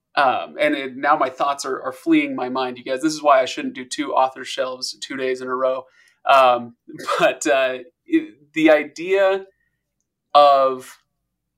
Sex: male